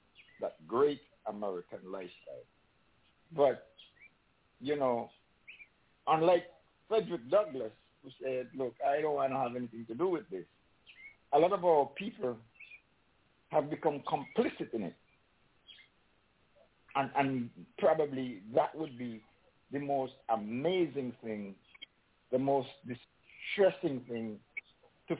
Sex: male